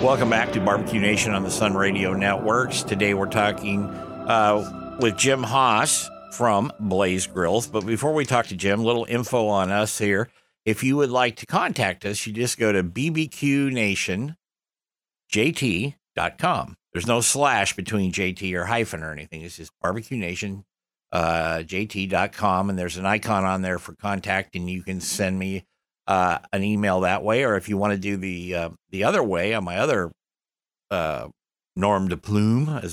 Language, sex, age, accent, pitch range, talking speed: English, male, 60-79, American, 95-115 Hz, 175 wpm